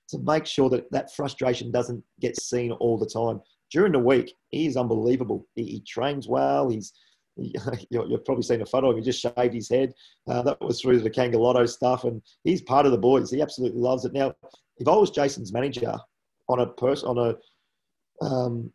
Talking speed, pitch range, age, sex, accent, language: 215 wpm, 120-145 Hz, 40-59, male, Australian, English